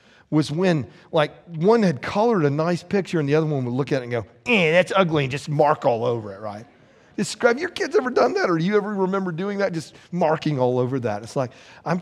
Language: English